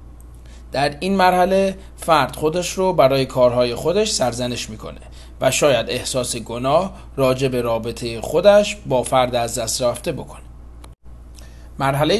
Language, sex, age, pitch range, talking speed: Persian, male, 40-59, 115-160 Hz, 130 wpm